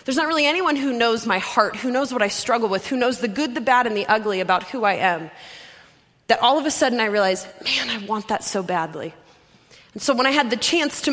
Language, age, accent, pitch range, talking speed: English, 20-39, American, 205-265 Hz, 260 wpm